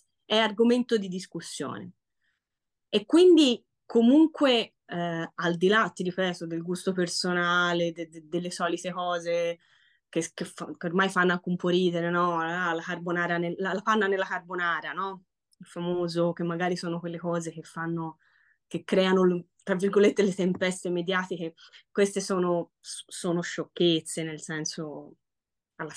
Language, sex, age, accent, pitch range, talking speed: Italian, female, 20-39, native, 170-215 Hz, 145 wpm